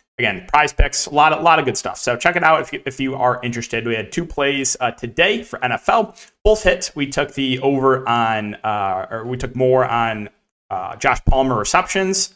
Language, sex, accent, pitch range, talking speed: English, male, American, 120-155 Hz, 210 wpm